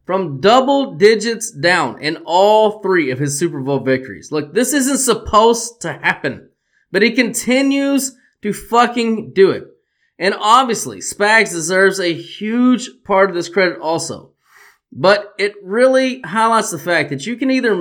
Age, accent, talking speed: 20-39, American, 155 wpm